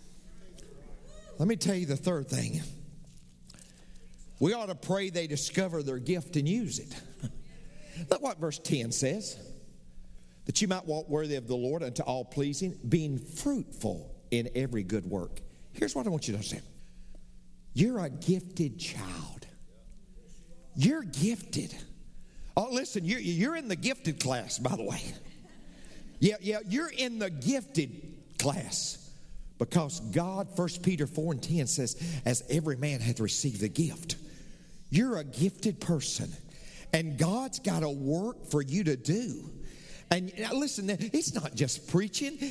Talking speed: 150 wpm